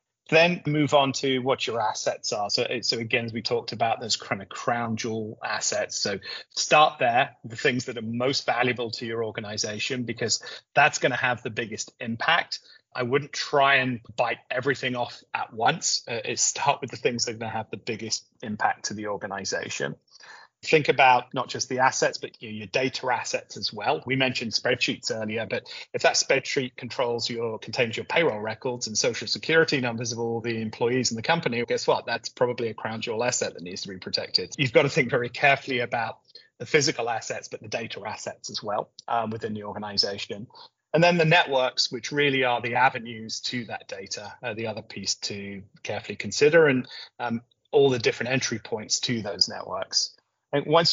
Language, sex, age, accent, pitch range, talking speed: English, male, 30-49, British, 115-140 Hz, 200 wpm